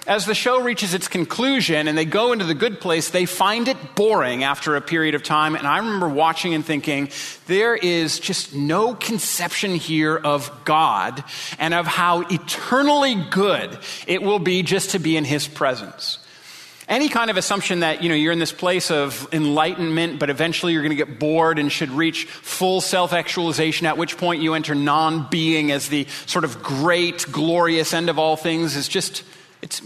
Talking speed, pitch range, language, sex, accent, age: 195 wpm, 155-190 Hz, English, male, American, 30-49